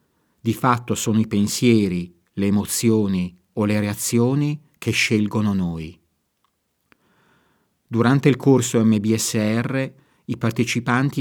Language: Italian